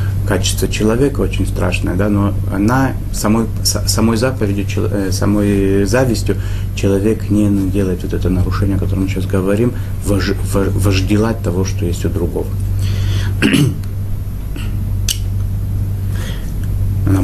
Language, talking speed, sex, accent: Russian, 100 wpm, male, native